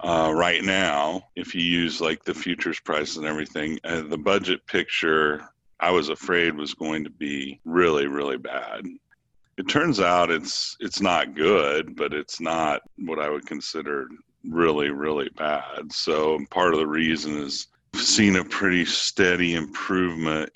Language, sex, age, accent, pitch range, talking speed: English, male, 50-69, American, 75-80 Hz, 165 wpm